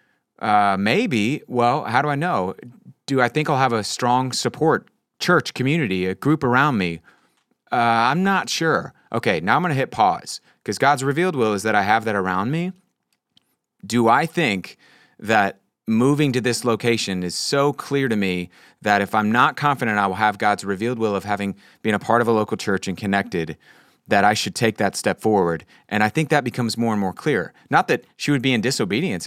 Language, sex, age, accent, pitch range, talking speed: English, male, 30-49, American, 105-125 Hz, 205 wpm